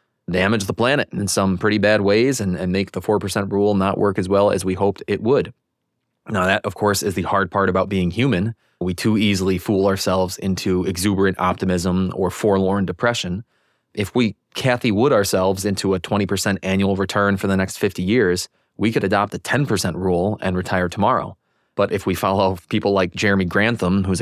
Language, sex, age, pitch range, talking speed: English, male, 20-39, 90-105 Hz, 195 wpm